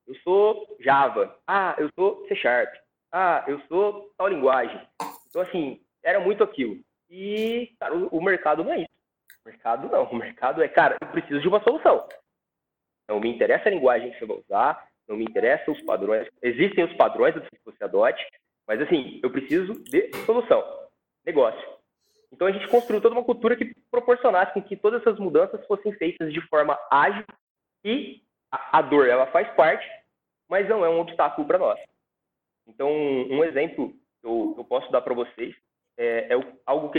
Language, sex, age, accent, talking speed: Portuguese, male, 20-39, Brazilian, 175 wpm